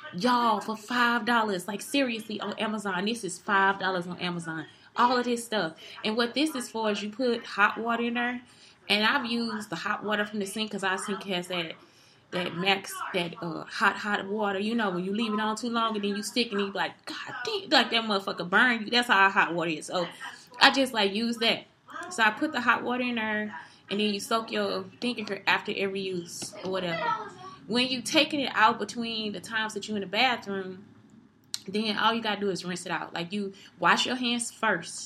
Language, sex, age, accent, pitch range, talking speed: English, female, 20-39, American, 190-235 Hz, 225 wpm